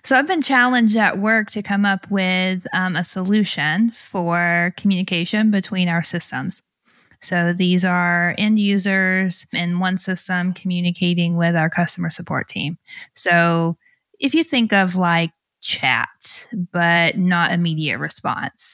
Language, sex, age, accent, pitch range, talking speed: English, female, 20-39, American, 165-195 Hz, 140 wpm